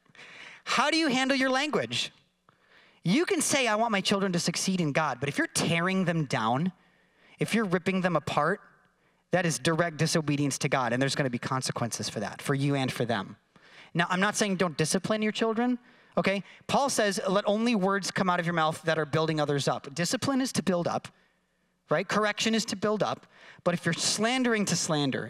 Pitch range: 135-200 Hz